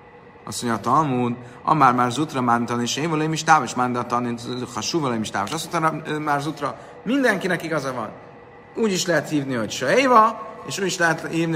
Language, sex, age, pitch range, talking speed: Hungarian, male, 30-49, 120-165 Hz, 200 wpm